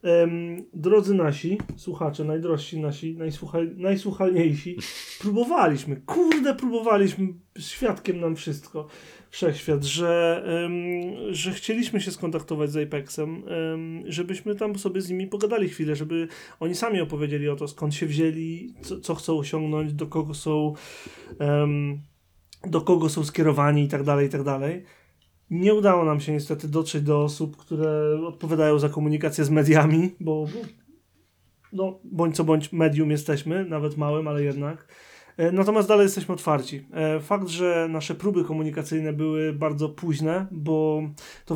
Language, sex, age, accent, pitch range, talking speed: Polish, male, 30-49, native, 150-175 Hz, 125 wpm